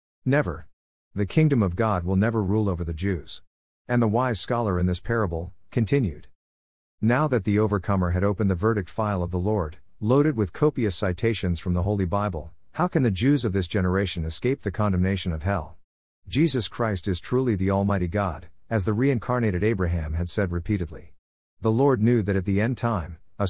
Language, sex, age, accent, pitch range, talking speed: English, male, 50-69, American, 90-115 Hz, 190 wpm